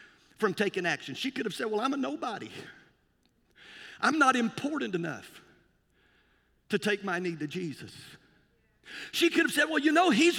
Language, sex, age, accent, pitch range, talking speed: English, male, 50-69, American, 230-310 Hz, 170 wpm